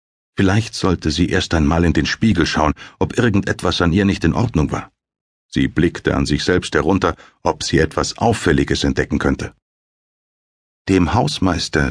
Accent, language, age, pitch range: German, German, 60-79, 85-105 Hz